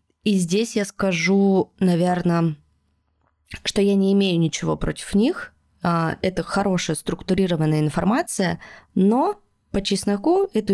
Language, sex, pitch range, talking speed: Russian, female, 160-205 Hz, 110 wpm